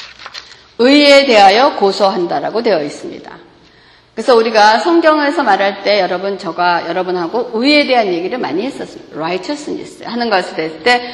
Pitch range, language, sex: 205-320 Hz, Korean, female